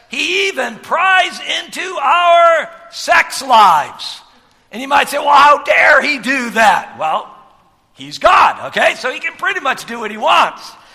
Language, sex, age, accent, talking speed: English, male, 60-79, American, 165 wpm